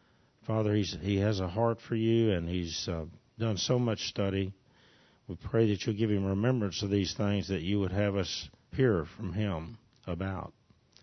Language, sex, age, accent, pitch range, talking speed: English, male, 60-79, American, 95-115 Hz, 180 wpm